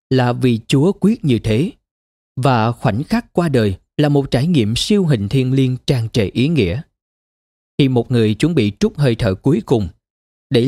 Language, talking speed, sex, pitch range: Vietnamese, 190 wpm, male, 105-150 Hz